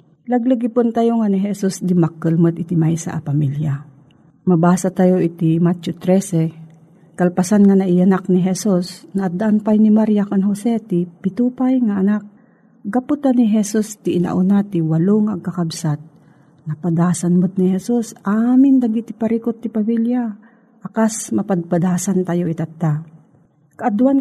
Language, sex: Filipino, female